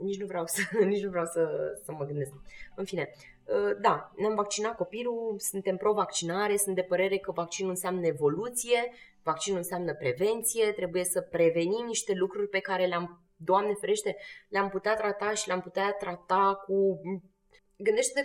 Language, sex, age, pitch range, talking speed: Romanian, female, 20-39, 180-240 Hz, 160 wpm